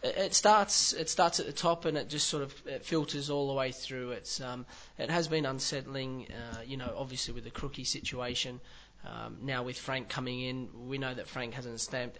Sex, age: male, 20-39